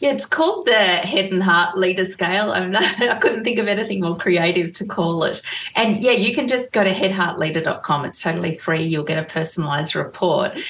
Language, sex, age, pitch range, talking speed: English, female, 30-49, 170-205 Hz, 210 wpm